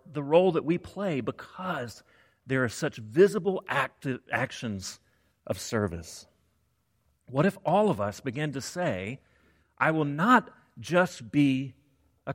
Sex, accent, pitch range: male, American, 105-155 Hz